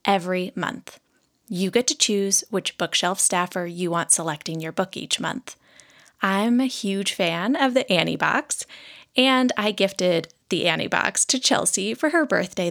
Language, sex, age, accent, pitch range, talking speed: English, female, 20-39, American, 180-255 Hz, 165 wpm